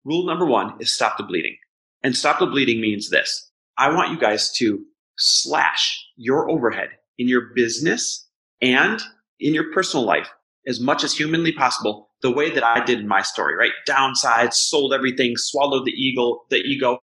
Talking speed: 180 wpm